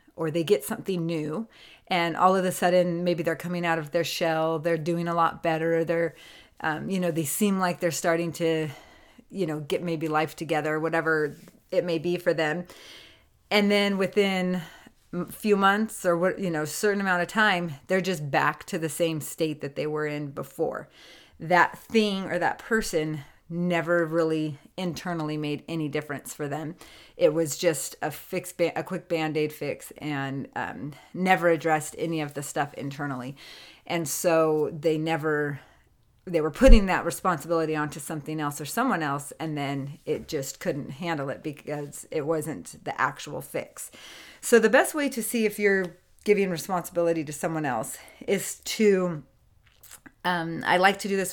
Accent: American